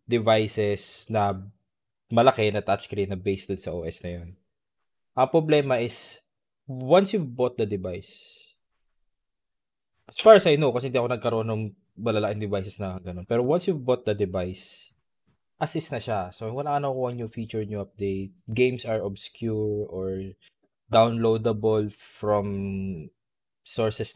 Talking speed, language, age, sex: 140 wpm, Filipino, 20-39, male